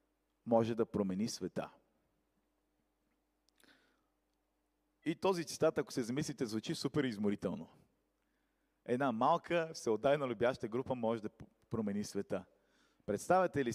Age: 40-59